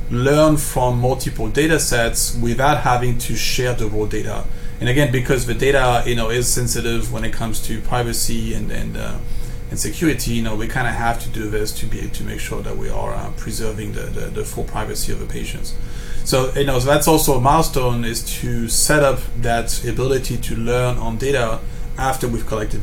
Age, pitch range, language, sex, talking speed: 30-49, 110-125 Hz, English, male, 210 wpm